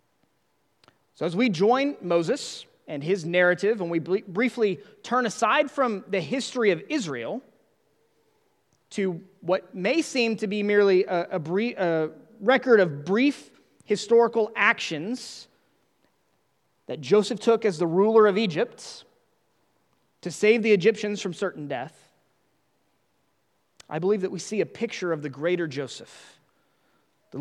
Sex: male